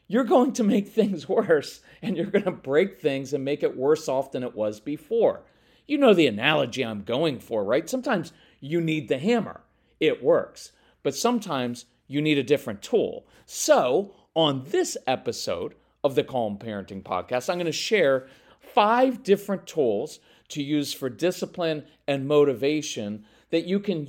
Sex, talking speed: male, 170 wpm